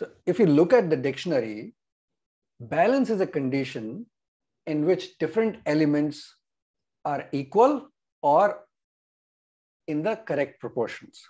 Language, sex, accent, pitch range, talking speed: English, male, Indian, 135-190 Hz, 115 wpm